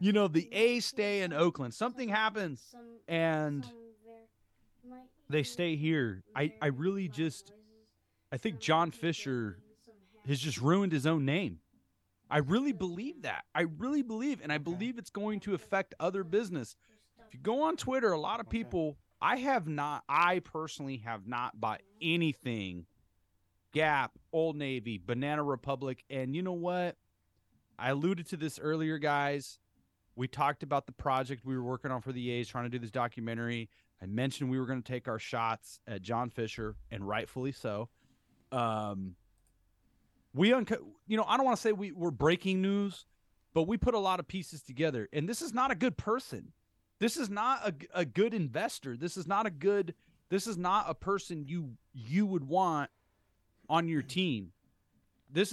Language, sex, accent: English, male, American